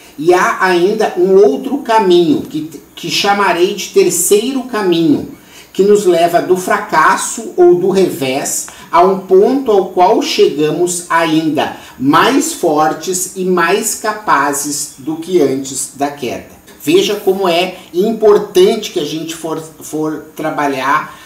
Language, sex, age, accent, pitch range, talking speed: Portuguese, male, 50-69, Brazilian, 150-215 Hz, 135 wpm